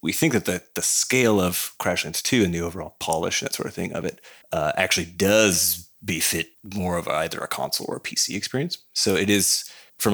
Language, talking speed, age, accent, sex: English, 215 wpm, 30-49, American, male